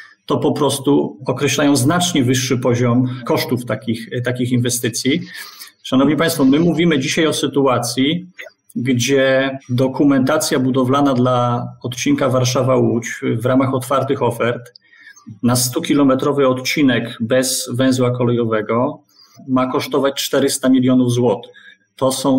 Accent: native